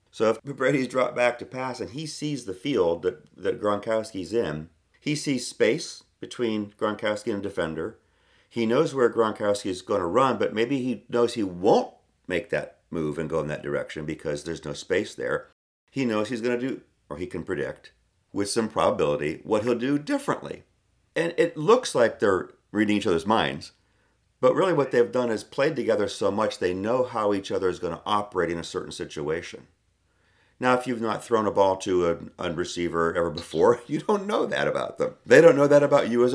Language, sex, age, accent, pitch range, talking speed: English, male, 50-69, American, 90-130 Hz, 205 wpm